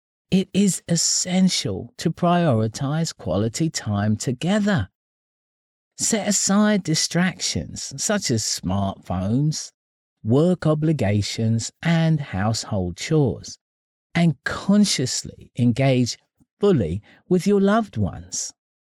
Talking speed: 85 wpm